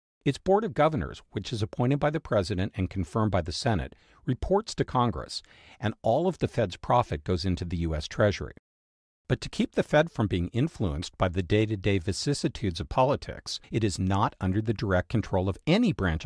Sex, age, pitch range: male, 50-69, 90-125 Hz